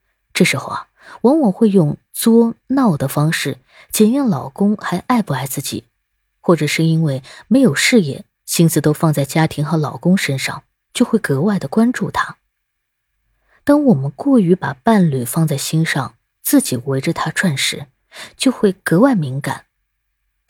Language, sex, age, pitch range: Chinese, female, 20-39, 145-220 Hz